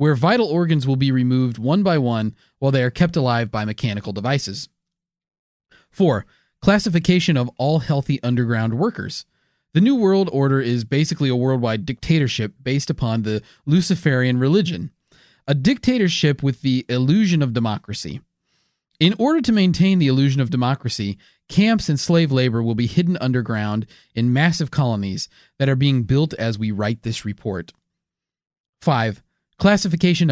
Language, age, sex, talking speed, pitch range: English, 30-49, male, 150 wpm, 120-175 Hz